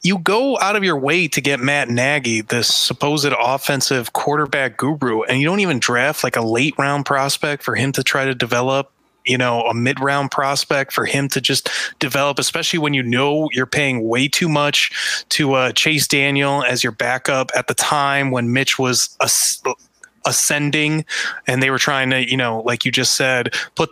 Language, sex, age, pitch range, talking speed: English, male, 20-39, 125-160 Hz, 200 wpm